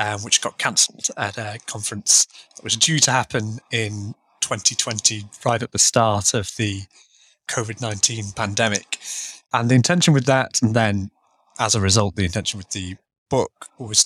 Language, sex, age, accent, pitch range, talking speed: English, male, 30-49, British, 105-125 Hz, 160 wpm